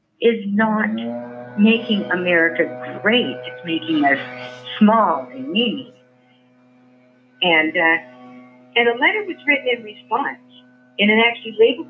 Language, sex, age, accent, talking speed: English, female, 50-69, American, 120 wpm